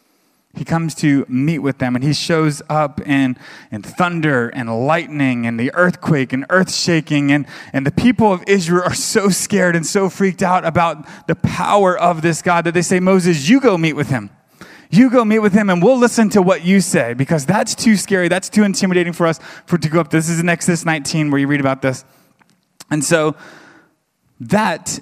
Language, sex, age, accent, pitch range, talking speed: English, male, 20-39, American, 145-185 Hz, 205 wpm